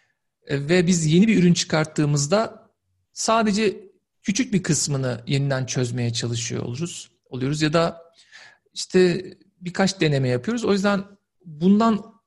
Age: 50-69